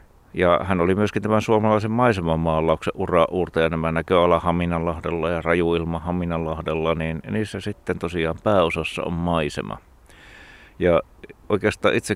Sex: male